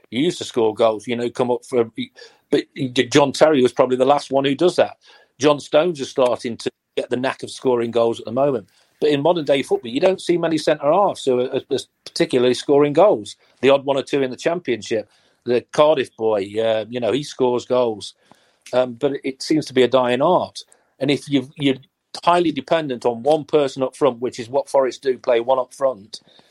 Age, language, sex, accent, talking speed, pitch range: 40-59, English, male, British, 215 wpm, 125-150 Hz